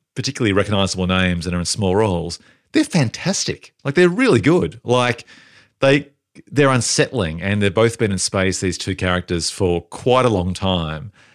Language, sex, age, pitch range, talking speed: English, male, 40-59, 95-120 Hz, 175 wpm